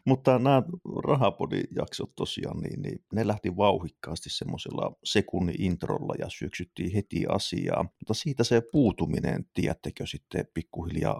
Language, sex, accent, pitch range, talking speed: Finnish, male, native, 85-105 Hz, 130 wpm